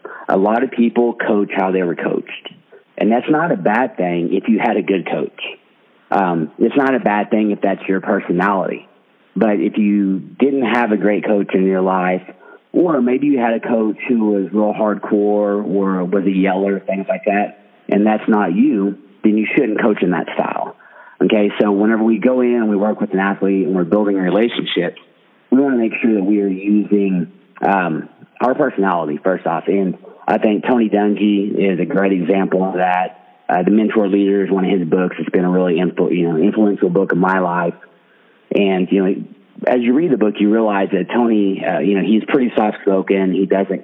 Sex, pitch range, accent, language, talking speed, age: male, 95-110 Hz, American, English, 205 wpm, 40-59